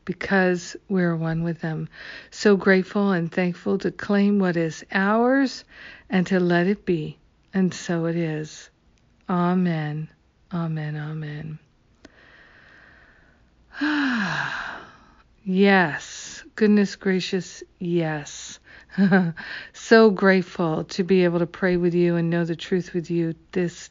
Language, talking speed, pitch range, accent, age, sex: English, 120 wpm, 170-205 Hz, American, 50-69, female